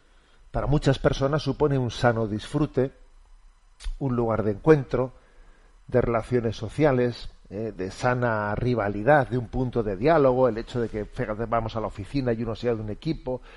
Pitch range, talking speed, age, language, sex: 110-130 Hz, 165 wpm, 40-59, Spanish, male